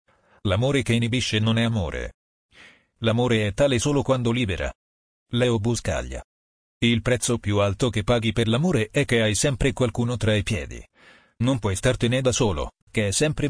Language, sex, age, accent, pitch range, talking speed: Italian, male, 40-59, native, 100-120 Hz, 170 wpm